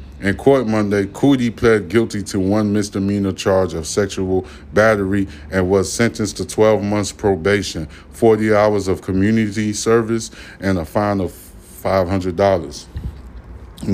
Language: English